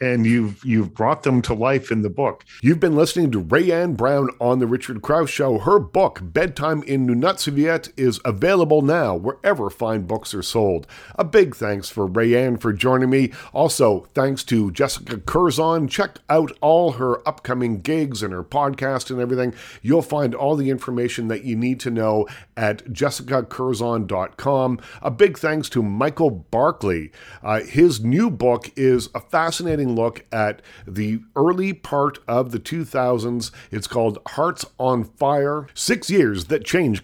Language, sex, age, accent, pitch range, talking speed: English, male, 50-69, American, 115-150 Hz, 160 wpm